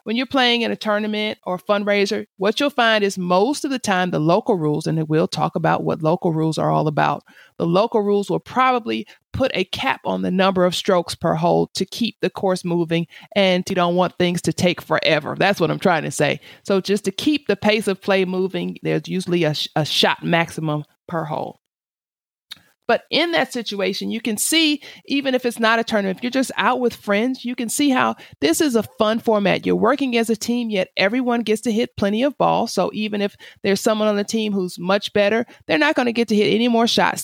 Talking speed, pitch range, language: 230 wpm, 175-230 Hz, English